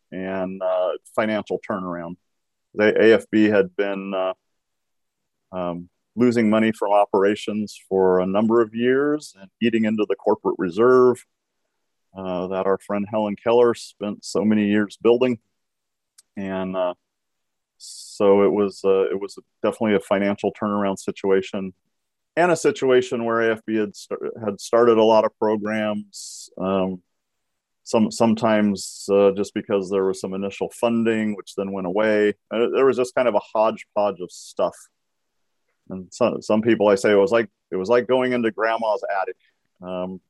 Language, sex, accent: English, male, American